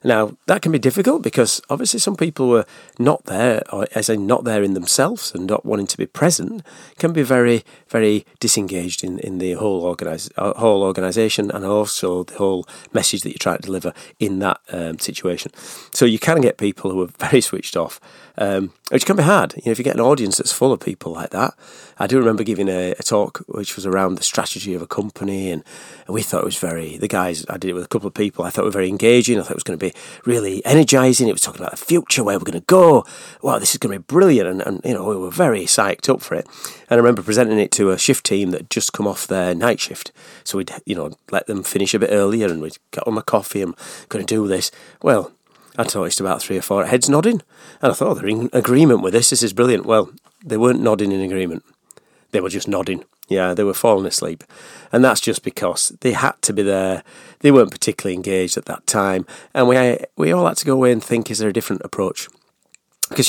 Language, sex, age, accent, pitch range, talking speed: English, male, 40-59, British, 95-120 Hz, 245 wpm